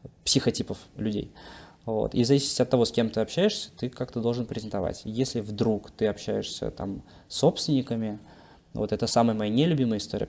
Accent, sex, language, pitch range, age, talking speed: native, male, Russian, 105-135 Hz, 20-39, 170 wpm